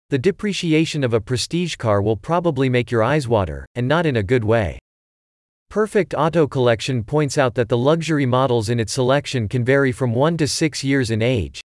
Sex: male